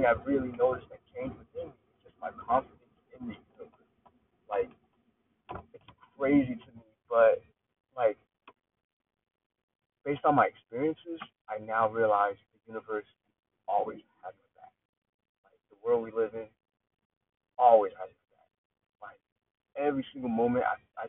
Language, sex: English, male